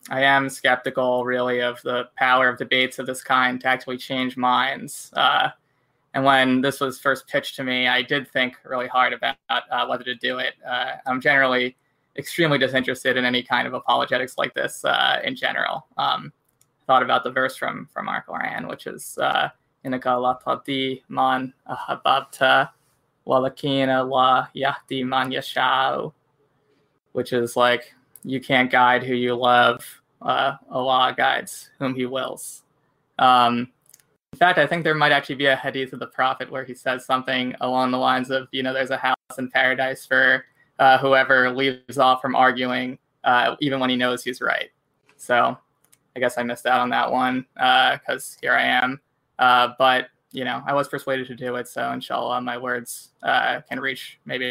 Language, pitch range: English, 125-135 Hz